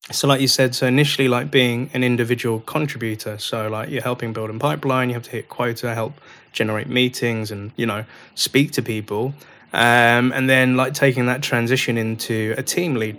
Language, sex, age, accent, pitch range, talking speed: English, male, 20-39, British, 115-135 Hz, 195 wpm